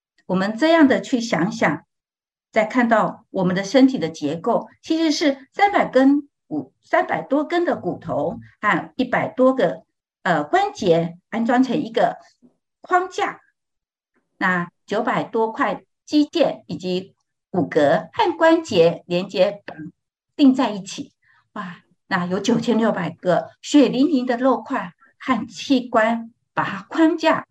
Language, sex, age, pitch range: Chinese, female, 50-69, 185-295 Hz